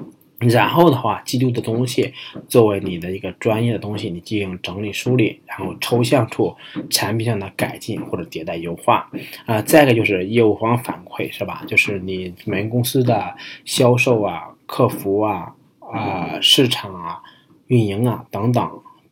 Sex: male